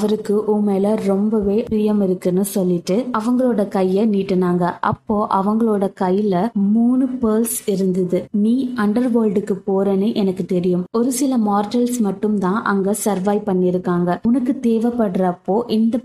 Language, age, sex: Tamil, 20-39, female